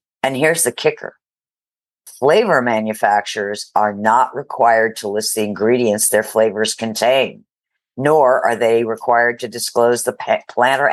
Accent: American